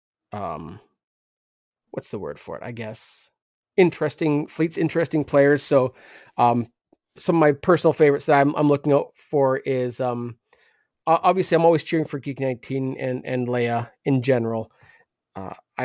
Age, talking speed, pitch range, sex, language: 30-49, 150 wpm, 120-150 Hz, male, English